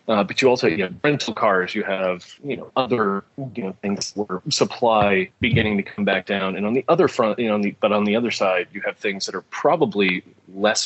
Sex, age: male, 30-49